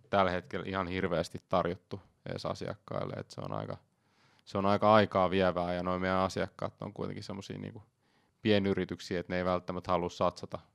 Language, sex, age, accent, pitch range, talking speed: Finnish, male, 30-49, native, 90-105 Hz, 160 wpm